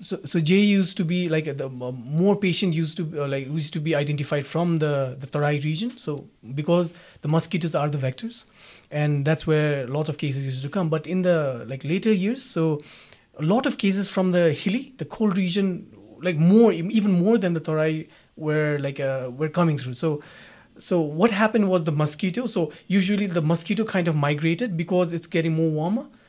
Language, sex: English, male